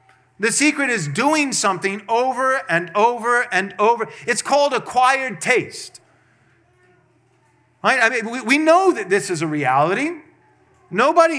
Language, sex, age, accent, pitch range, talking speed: English, male, 30-49, American, 180-245 Hz, 135 wpm